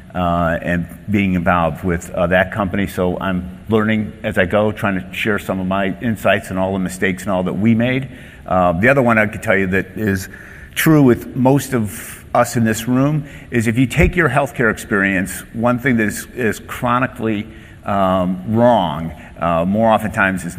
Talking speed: 195 wpm